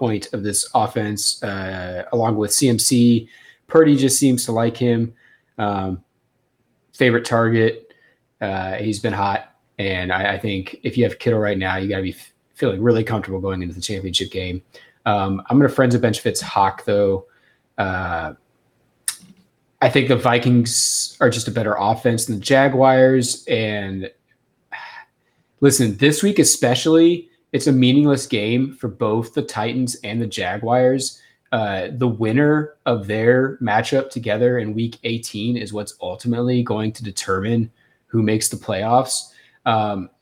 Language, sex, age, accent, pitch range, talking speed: English, male, 20-39, American, 105-130 Hz, 150 wpm